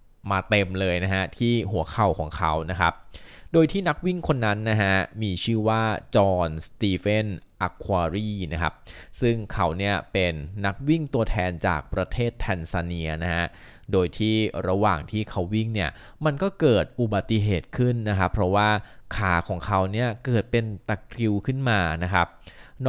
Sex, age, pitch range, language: male, 20-39, 95-125 Hz, Thai